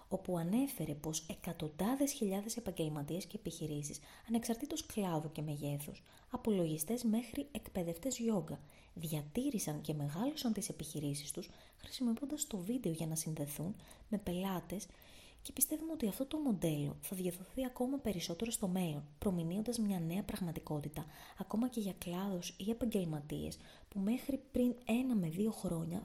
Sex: female